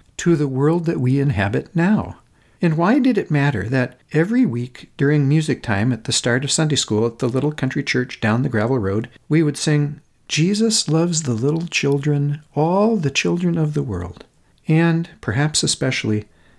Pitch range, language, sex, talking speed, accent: 115-160 Hz, English, male, 180 wpm, American